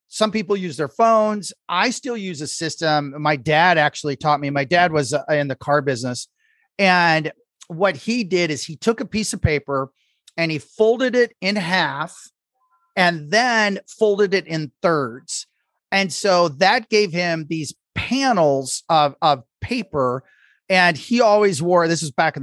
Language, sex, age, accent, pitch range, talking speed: English, male, 30-49, American, 150-205 Hz, 170 wpm